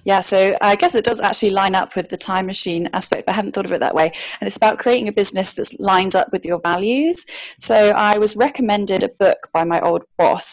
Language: English